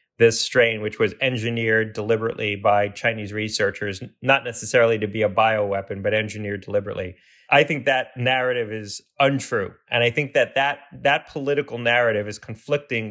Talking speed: 155 wpm